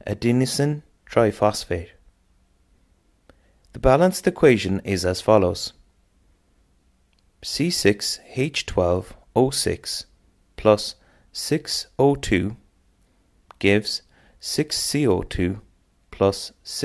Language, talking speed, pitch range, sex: English, 50 wpm, 90-120 Hz, male